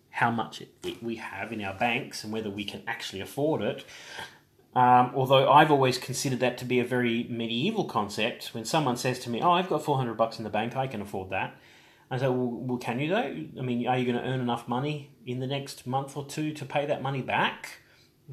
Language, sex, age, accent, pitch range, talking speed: English, male, 30-49, Australian, 120-145 Hz, 230 wpm